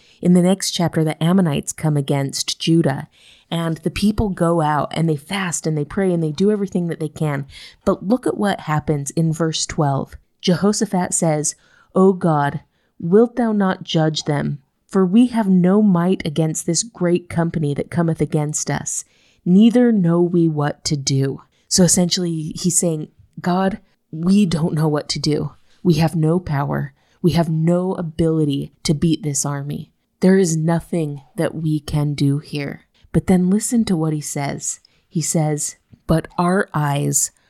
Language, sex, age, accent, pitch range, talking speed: English, female, 30-49, American, 150-180 Hz, 170 wpm